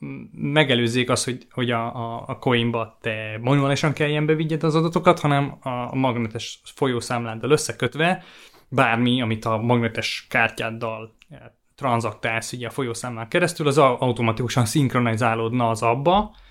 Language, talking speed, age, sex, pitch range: Hungarian, 115 wpm, 20-39, male, 115-135 Hz